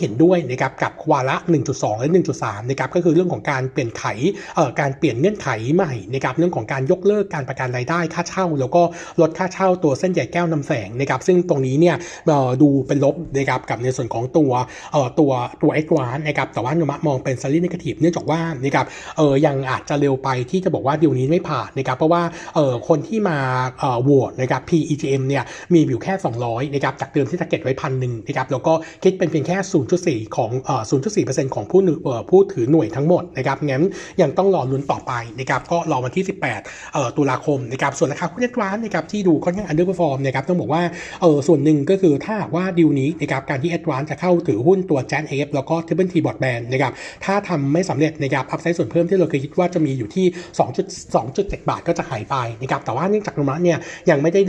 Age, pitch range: 60-79, 135-175 Hz